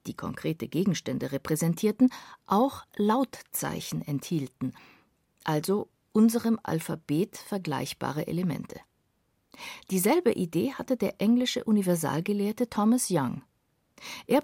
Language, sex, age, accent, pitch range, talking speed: German, female, 50-69, German, 155-220 Hz, 85 wpm